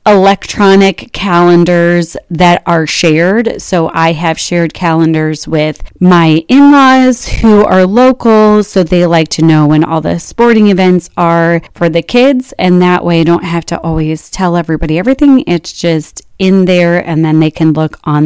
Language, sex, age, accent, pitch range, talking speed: English, female, 30-49, American, 160-185 Hz, 170 wpm